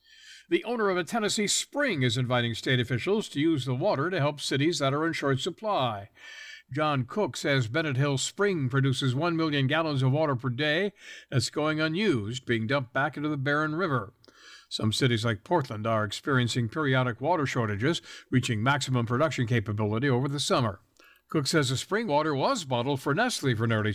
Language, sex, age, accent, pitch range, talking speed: English, male, 60-79, American, 125-165 Hz, 185 wpm